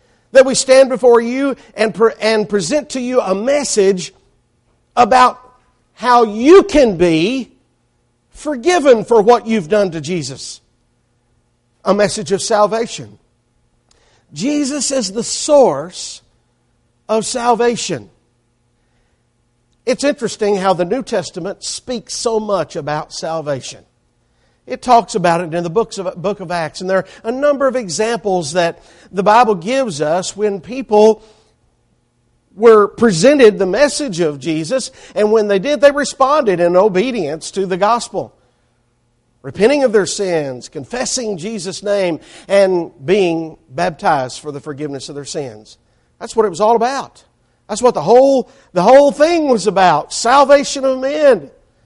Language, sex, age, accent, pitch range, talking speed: English, male, 50-69, American, 170-245 Hz, 140 wpm